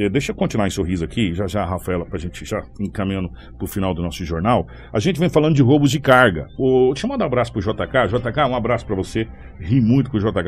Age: 60-79